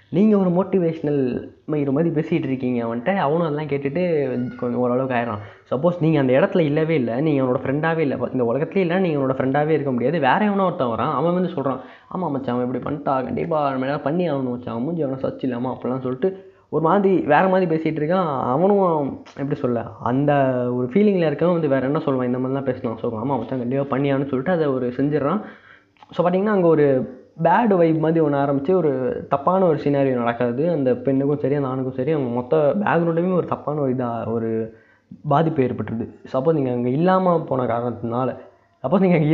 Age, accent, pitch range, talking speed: 20-39, native, 130-170 Hz, 175 wpm